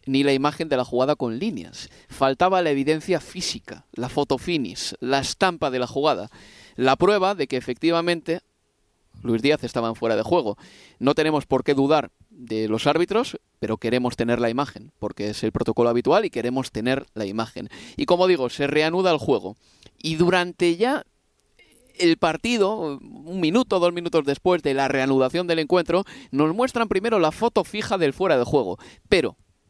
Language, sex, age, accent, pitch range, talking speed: Spanish, male, 30-49, Spanish, 130-180 Hz, 180 wpm